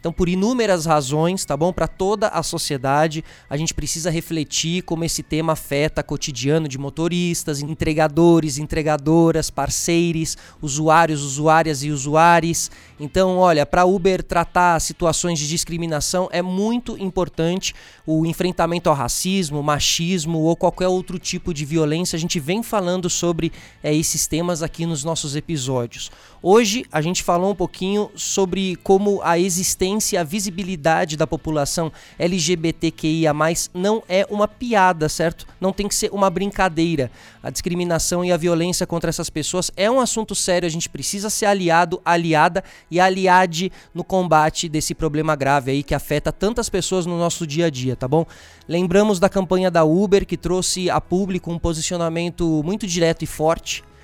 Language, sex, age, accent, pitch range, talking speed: Portuguese, male, 20-39, Brazilian, 155-185 Hz, 155 wpm